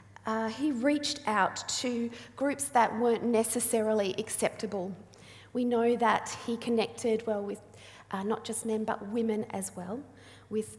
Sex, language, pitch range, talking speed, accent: female, English, 220-260 Hz, 145 wpm, Australian